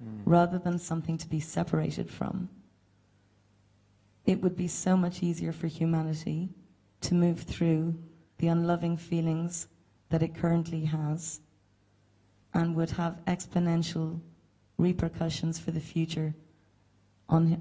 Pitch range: 105-175 Hz